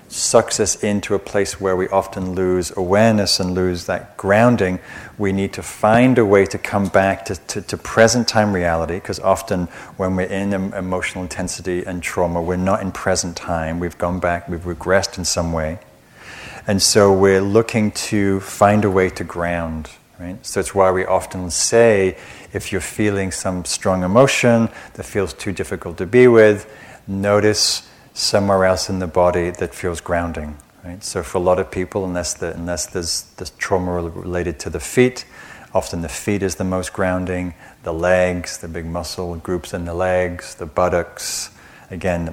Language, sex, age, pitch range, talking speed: English, male, 40-59, 90-100 Hz, 180 wpm